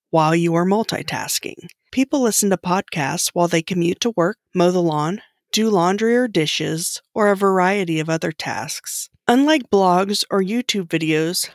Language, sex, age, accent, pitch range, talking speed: English, female, 20-39, American, 165-200 Hz, 160 wpm